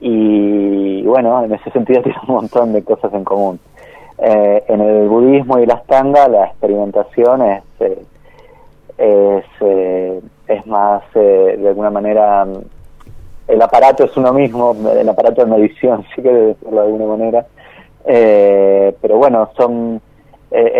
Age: 30-49